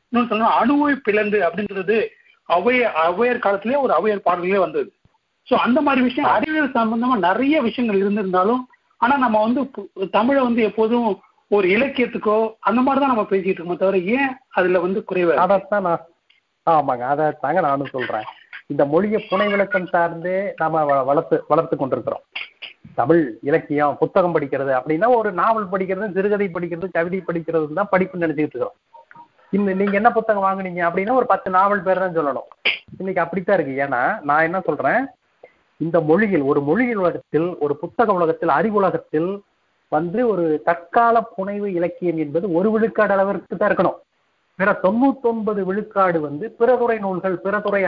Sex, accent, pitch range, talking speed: male, native, 170-225 Hz, 145 wpm